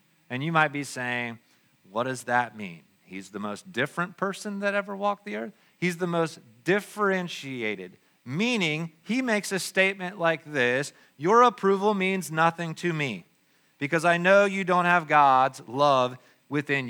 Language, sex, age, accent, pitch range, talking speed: English, male, 40-59, American, 155-210 Hz, 160 wpm